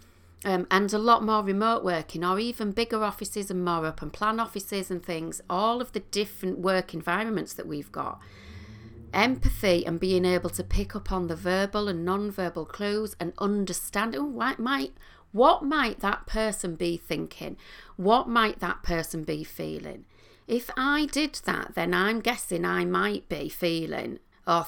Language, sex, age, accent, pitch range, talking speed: English, female, 40-59, British, 165-220 Hz, 170 wpm